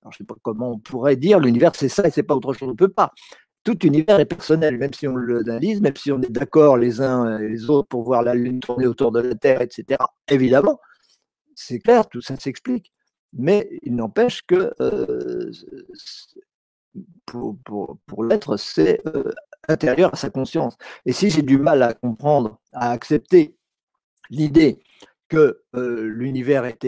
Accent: French